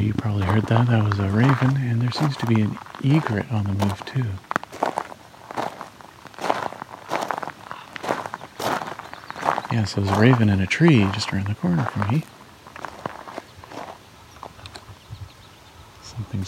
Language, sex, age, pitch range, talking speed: English, male, 40-59, 100-125 Hz, 125 wpm